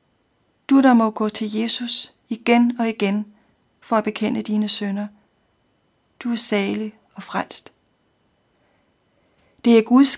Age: 40-59